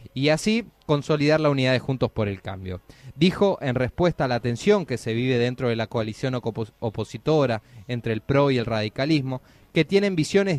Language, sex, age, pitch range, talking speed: Spanish, male, 20-39, 110-145 Hz, 185 wpm